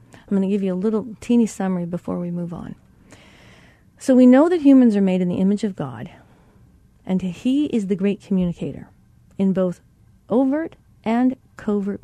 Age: 40-59